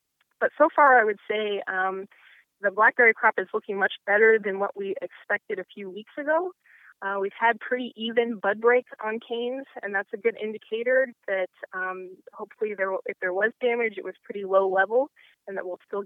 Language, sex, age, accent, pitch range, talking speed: English, female, 20-39, American, 190-225 Hz, 200 wpm